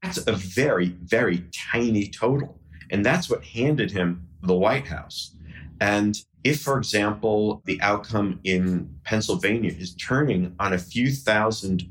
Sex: male